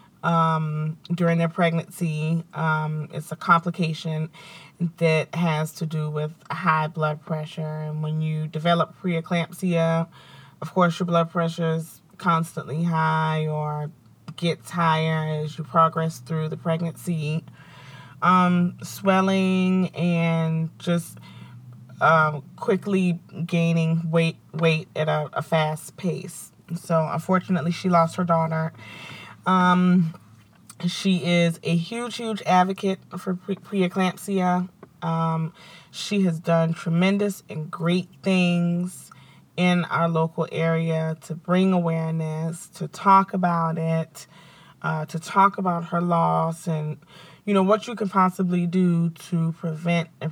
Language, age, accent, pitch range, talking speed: English, 30-49, American, 155-180 Hz, 125 wpm